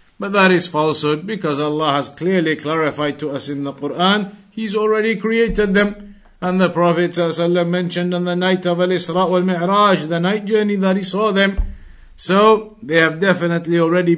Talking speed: 180 wpm